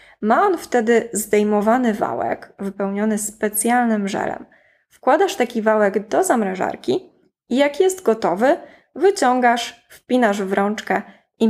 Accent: native